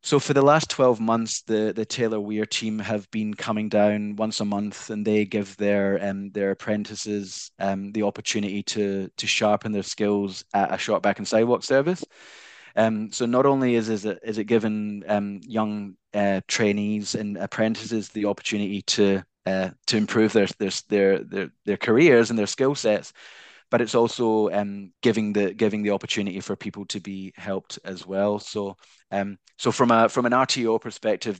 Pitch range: 100-115 Hz